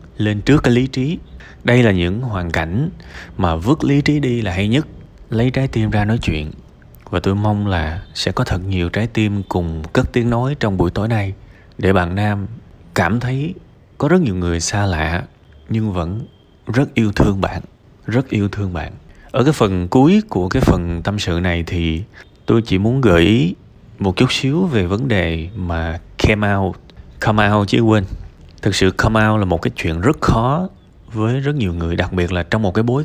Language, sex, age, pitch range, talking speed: Vietnamese, male, 20-39, 90-115 Hz, 200 wpm